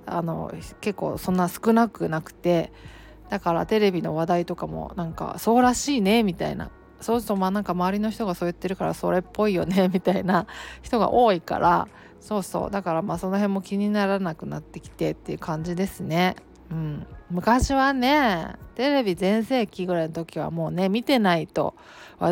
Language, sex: Japanese, female